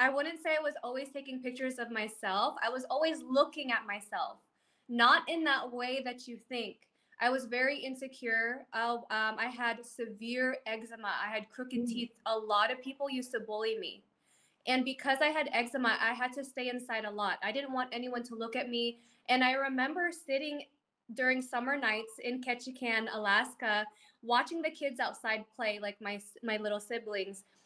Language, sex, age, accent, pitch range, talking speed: English, female, 20-39, American, 220-270 Hz, 185 wpm